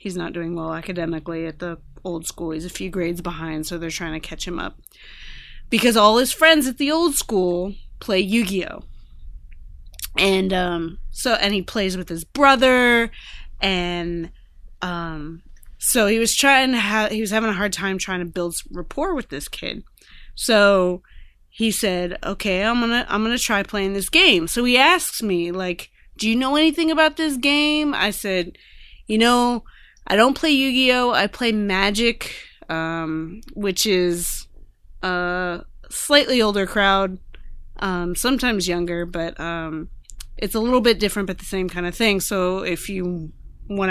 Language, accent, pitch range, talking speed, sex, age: English, American, 175-230 Hz, 170 wpm, female, 20-39